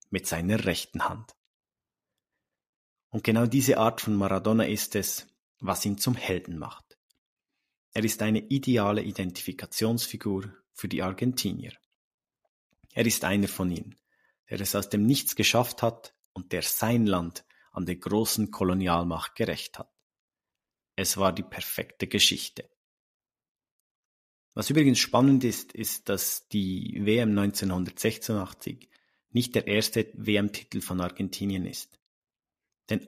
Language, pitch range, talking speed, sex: German, 95-115 Hz, 125 wpm, male